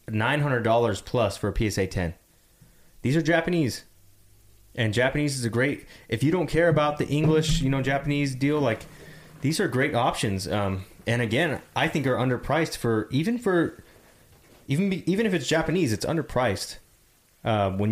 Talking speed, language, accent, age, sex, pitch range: 165 wpm, English, American, 20-39, male, 100-145 Hz